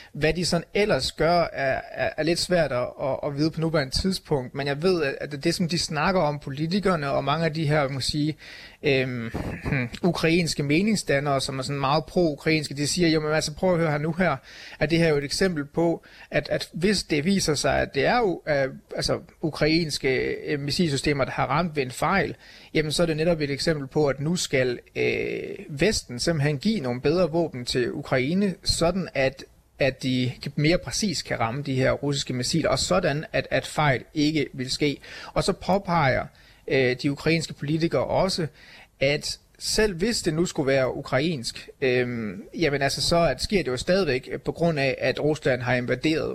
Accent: native